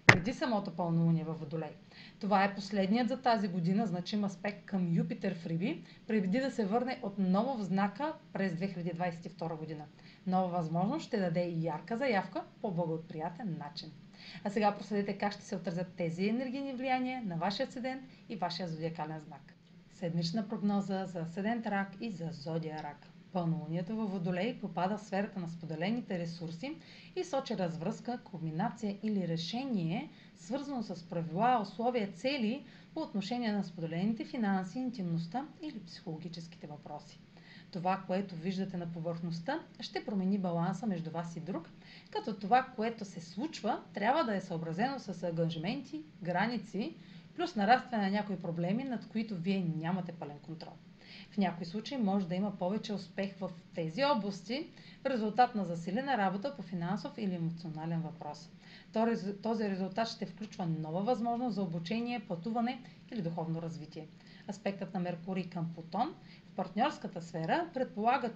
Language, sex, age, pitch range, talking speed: Bulgarian, female, 30-49, 175-220 Hz, 145 wpm